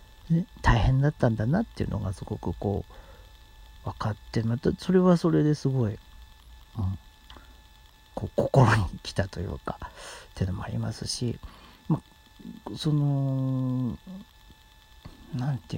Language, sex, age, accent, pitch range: Japanese, male, 50-69, native, 100-160 Hz